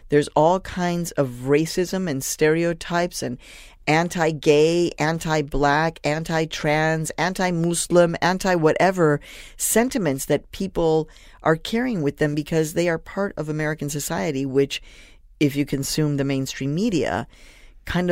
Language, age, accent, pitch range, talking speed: English, 50-69, American, 145-190 Hz, 115 wpm